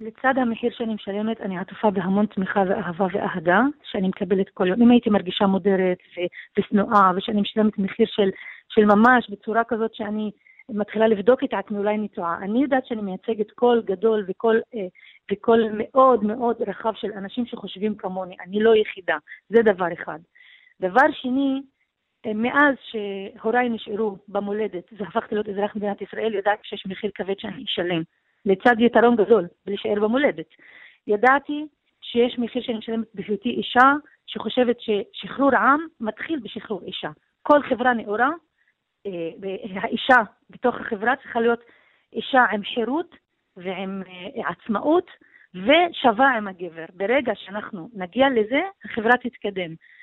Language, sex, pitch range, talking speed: Hebrew, female, 200-250 Hz, 140 wpm